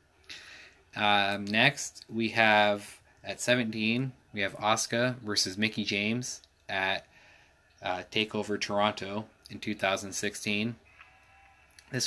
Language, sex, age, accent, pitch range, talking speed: English, male, 20-39, American, 95-110 Hz, 90 wpm